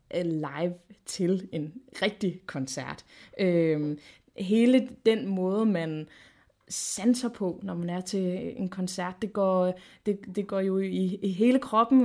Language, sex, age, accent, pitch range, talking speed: Danish, female, 20-39, native, 195-240 Hz, 140 wpm